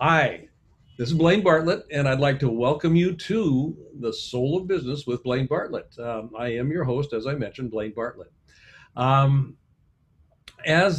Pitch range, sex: 120-150 Hz, male